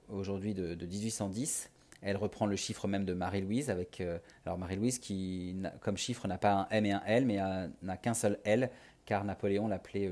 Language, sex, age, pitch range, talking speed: French, male, 30-49, 95-115 Hz, 215 wpm